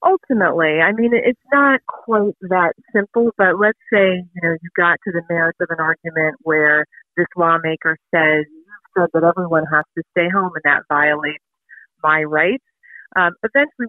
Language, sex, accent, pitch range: English, female, American, 160-200 Hz